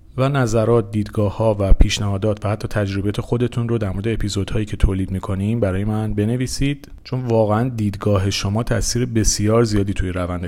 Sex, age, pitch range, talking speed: male, 40-59, 95-115 Hz, 160 wpm